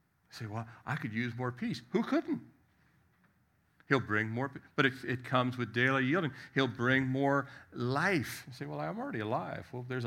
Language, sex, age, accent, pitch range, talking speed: English, male, 50-69, American, 105-145 Hz, 190 wpm